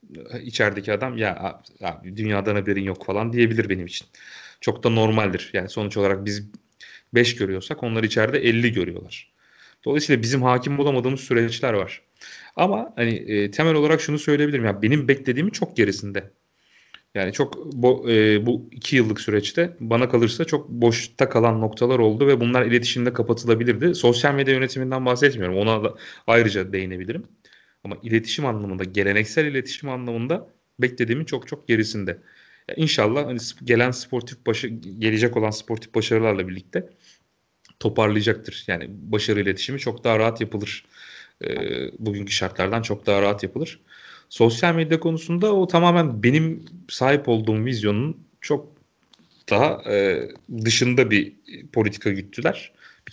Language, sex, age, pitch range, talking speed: Turkish, male, 30-49, 105-135 Hz, 135 wpm